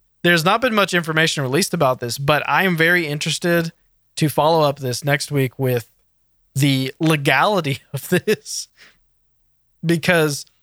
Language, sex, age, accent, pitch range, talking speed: English, male, 20-39, American, 130-175 Hz, 140 wpm